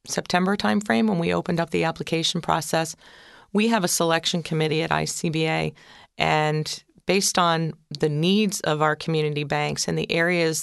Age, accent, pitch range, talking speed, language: 40-59, American, 155-180 Hz, 160 wpm, English